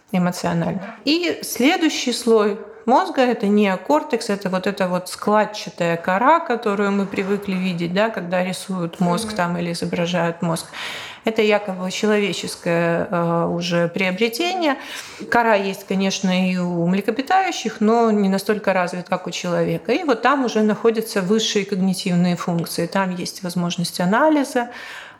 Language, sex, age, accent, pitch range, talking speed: Russian, female, 40-59, native, 185-230 Hz, 130 wpm